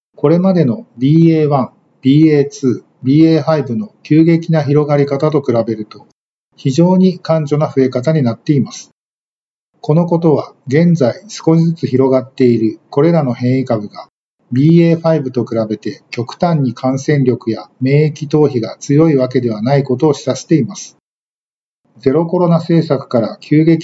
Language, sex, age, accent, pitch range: Japanese, male, 50-69, native, 125-160 Hz